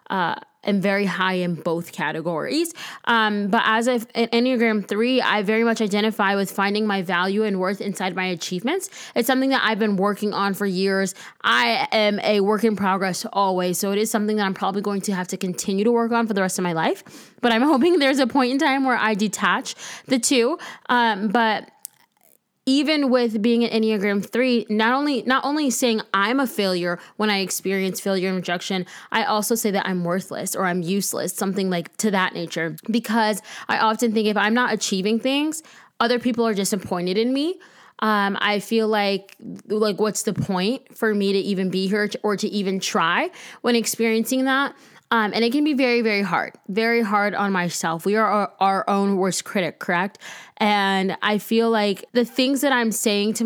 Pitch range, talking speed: 190-235 Hz, 200 wpm